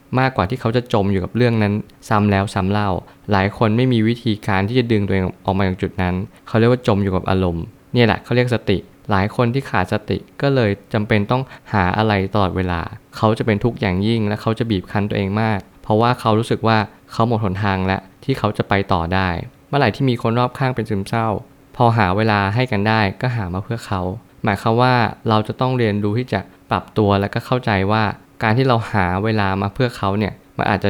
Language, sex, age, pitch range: Thai, male, 20-39, 100-120 Hz